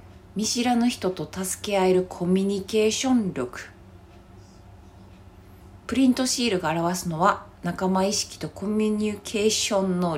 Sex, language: female, Japanese